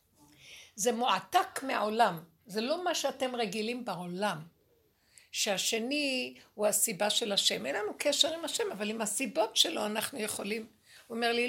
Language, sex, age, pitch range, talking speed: Hebrew, female, 60-79, 210-275 Hz, 145 wpm